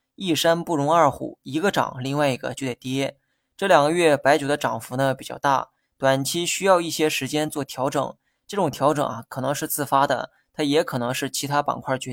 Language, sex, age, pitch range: Chinese, male, 20-39, 135-155 Hz